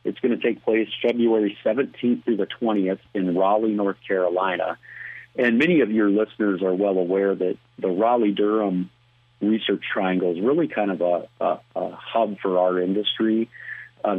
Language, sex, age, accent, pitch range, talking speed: English, male, 40-59, American, 95-110 Hz, 160 wpm